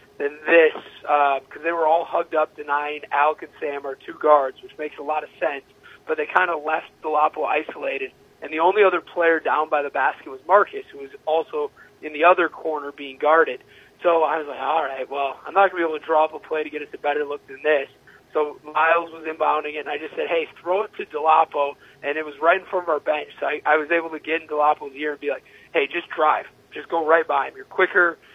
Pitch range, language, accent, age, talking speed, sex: 145-170 Hz, English, American, 30-49, 255 wpm, male